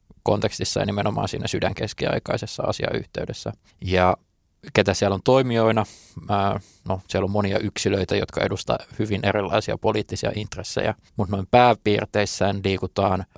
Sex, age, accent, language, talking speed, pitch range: male, 20-39, native, Finnish, 115 wpm, 95-110 Hz